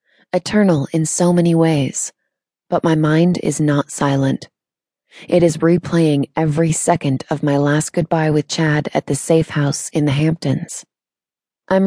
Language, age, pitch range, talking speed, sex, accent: English, 20-39, 150-180 Hz, 150 wpm, female, American